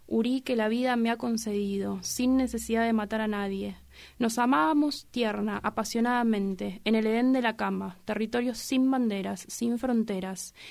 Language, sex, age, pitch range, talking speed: Spanish, female, 20-39, 200-245 Hz, 155 wpm